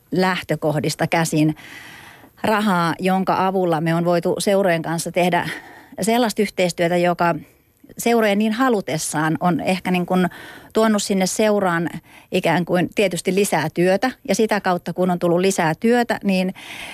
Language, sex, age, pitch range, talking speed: Finnish, female, 30-49, 165-200 Hz, 135 wpm